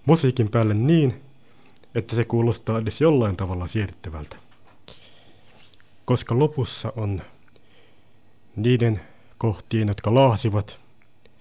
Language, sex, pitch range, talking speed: Finnish, male, 95-115 Hz, 90 wpm